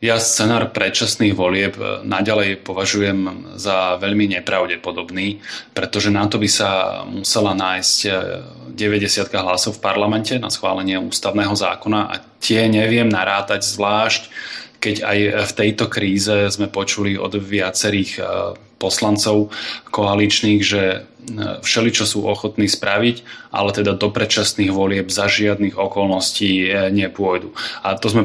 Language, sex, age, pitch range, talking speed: Slovak, male, 20-39, 100-110 Hz, 125 wpm